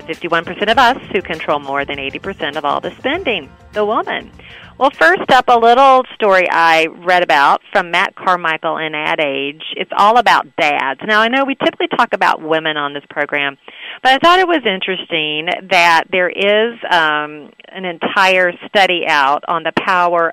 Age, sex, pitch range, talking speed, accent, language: 40-59, female, 160-205 Hz, 175 wpm, American, English